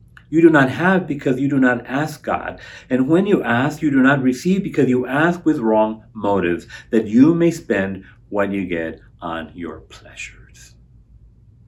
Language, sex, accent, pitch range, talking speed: English, male, American, 90-130 Hz, 175 wpm